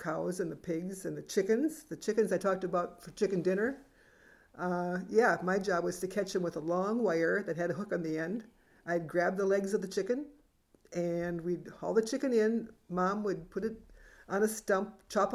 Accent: American